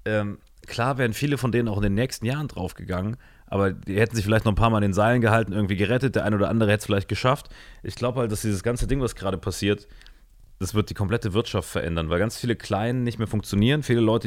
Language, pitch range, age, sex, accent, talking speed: German, 95-115 Hz, 30-49, male, German, 250 wpm